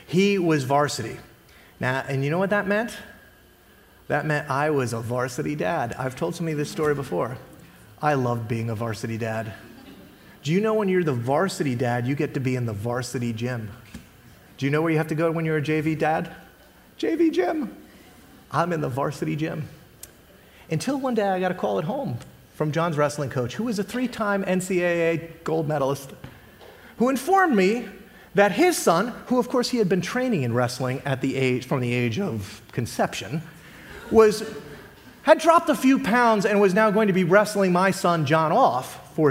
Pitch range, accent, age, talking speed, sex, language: 130-205 Hz, American, 30-49, 185 wpm, male, English